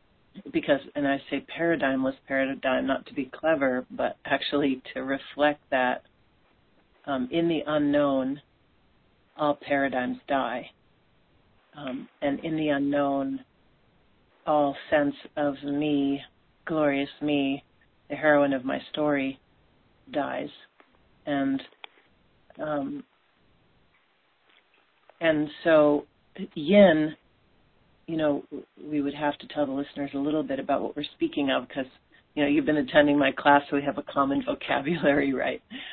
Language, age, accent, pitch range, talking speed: English, 40-59, American, 140-200 Hz, 125 wpm